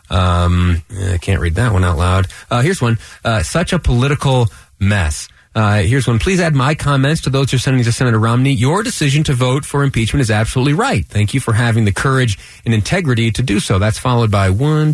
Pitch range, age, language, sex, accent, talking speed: 100-130 Hz, 30-49, English, male, American, 220 wpm